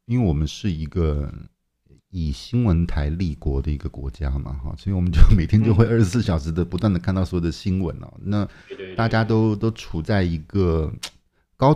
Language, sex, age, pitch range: Chinese, male, 50-69, 80-105 Hz